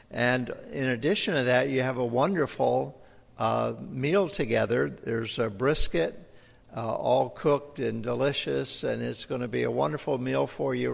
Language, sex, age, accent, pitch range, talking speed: English, male, 60-79, American, 120-140 Hz, 165 wpm